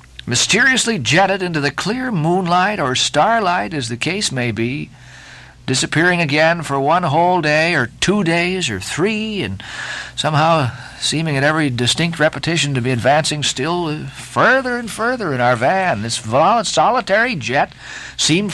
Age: 50-69